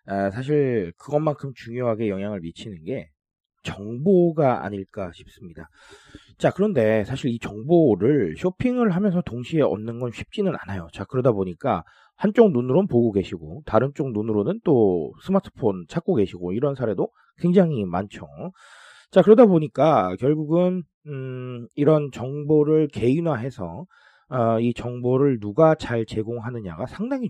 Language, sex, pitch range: Korean, male, 110-165 Hz